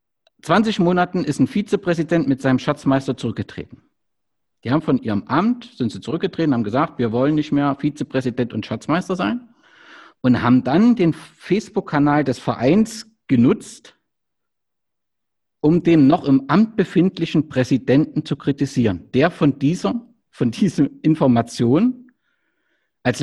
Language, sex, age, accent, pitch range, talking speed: German, male, 50-69, German, 125-175 Hz, 130 wpm